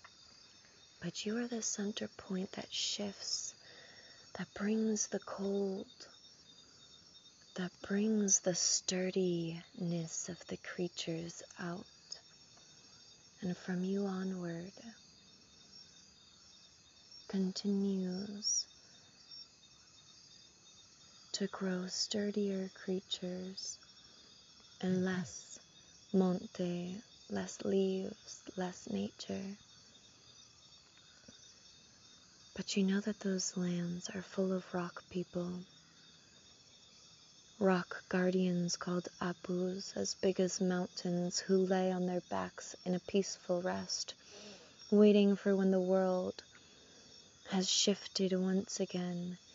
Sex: female